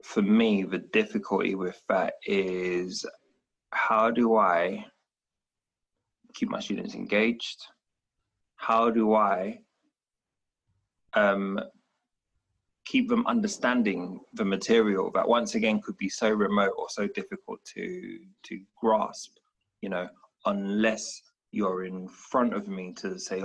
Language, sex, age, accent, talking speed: English, male, 20-39, British, 120 wpm